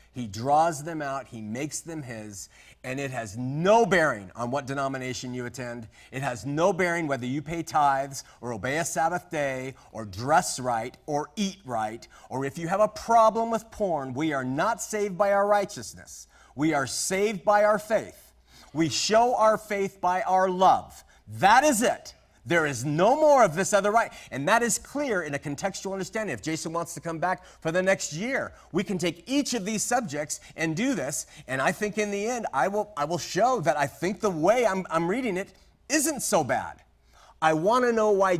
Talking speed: 205 wpm